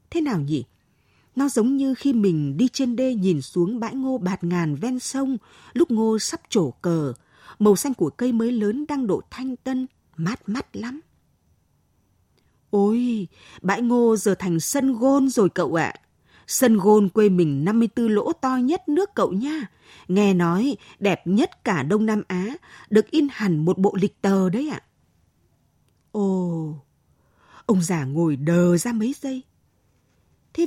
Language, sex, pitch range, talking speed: Vietnamese, female, 175-245 Hz, 170 wpm